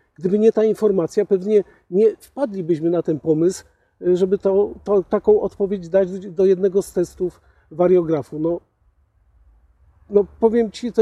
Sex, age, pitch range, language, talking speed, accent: male, 50-69, 160-200 Hz, Polish, 140 wpm, native